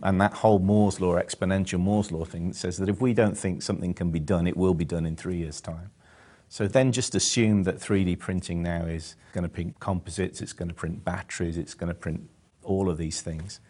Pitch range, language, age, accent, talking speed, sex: 85-105 Hz, English, 50-69, British, 230 wpm, male